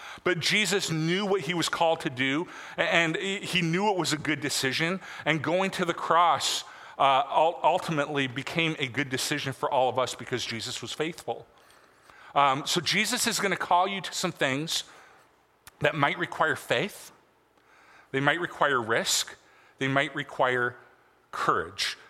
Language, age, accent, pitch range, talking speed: English, 40-59, American, 135-175 Hz, 160 wpm